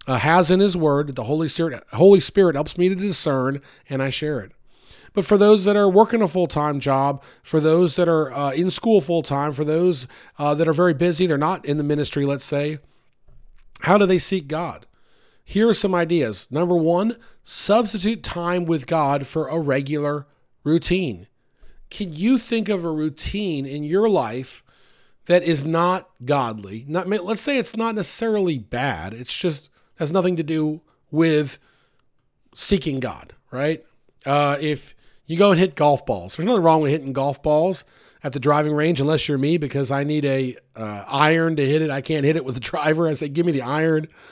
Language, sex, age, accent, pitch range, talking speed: English, male, 40-59, American, 140-180 Hz, 190 wpm